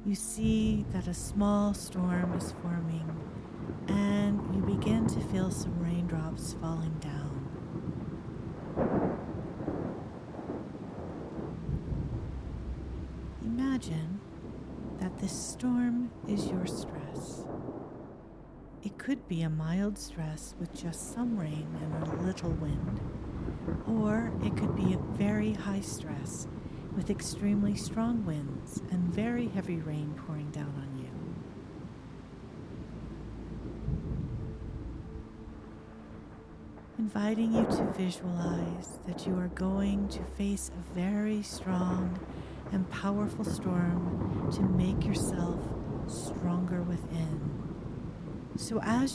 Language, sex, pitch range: English, female, 160-205 Hz